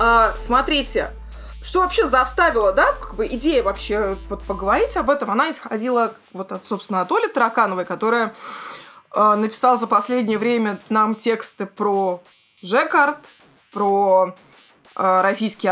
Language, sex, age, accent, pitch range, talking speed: Russian, female, 20-39, native, 205-275 Hz, 115 wpm